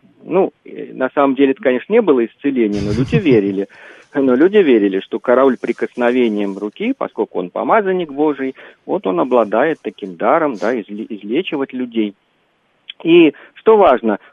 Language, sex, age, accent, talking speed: Russian, male, 40-59, native, 140 wpm